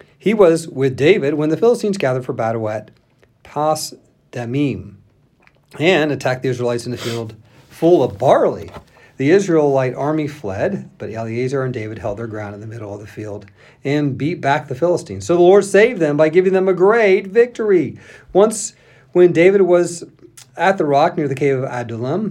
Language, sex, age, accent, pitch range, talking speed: English, male, 40-59, American, 120-165 Hz, 180 wpm